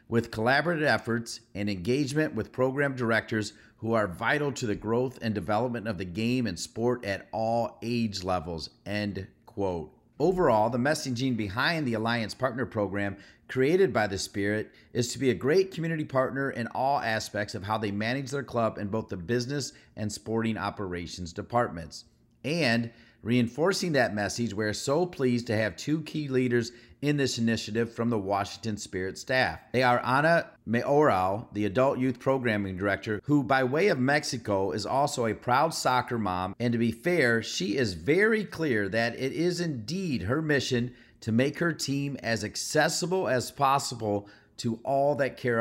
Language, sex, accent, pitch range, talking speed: English, male, American, 105-130 Hz, 170 wpm